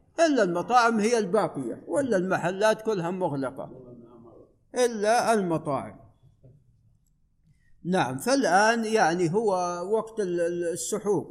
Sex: male